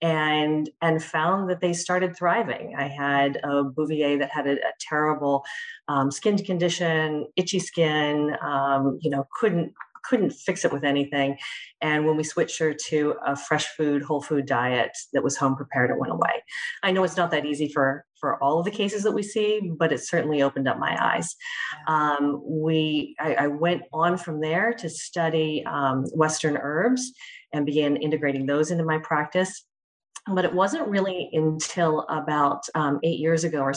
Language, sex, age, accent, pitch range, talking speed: English, female, 40-59, American, 140-165 Hz, 180 wpm